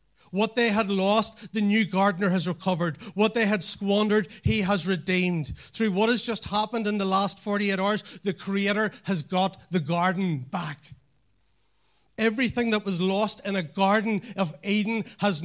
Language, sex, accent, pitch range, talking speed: English, male, Irish, 120-190 Hz, 165 wpm